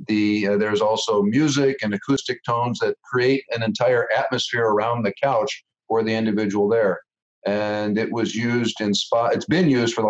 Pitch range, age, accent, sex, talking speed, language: 110-135 Hz, 50-69, American, male, 180 wpm, English